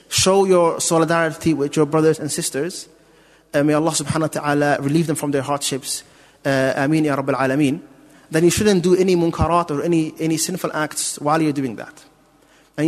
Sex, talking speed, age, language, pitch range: male, 170 wpm, 30-49, English, 150-175 Hz